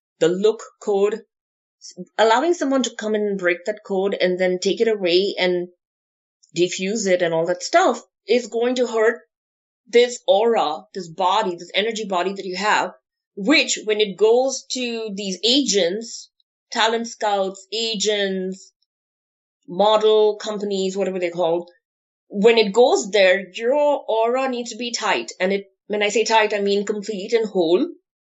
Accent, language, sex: Indian, English, female